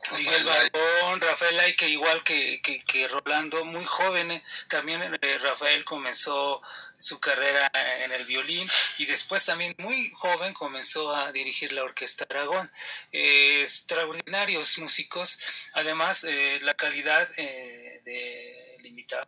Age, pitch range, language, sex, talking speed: 30-49, 140-175 Hz, Spanish, male, 135 wpm